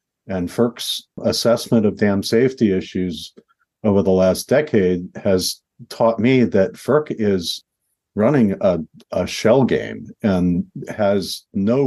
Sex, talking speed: male, 125 wpm